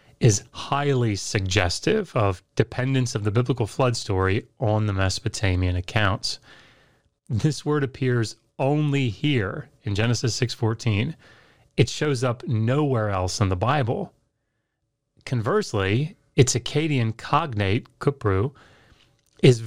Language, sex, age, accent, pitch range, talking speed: English, male, 30-49, American, 110-145 Hz, 110 wpm